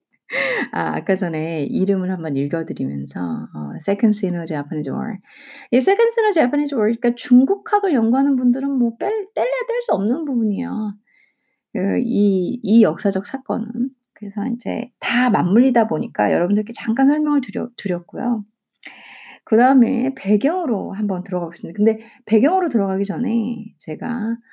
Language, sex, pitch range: Korean, female, 190-250 Hz